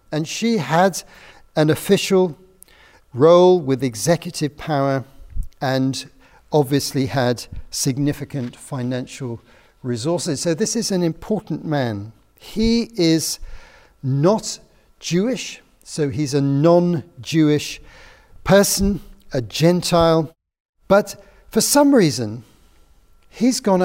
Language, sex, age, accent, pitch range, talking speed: English, male, 50-69, British, 135-195 Hz, 95 wpm